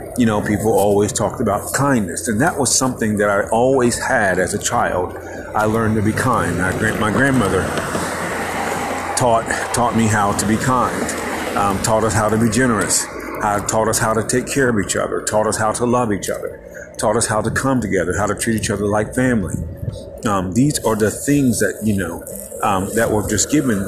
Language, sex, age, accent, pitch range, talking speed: English, male, 40-59, American, 105-120 Hz, 210 wpm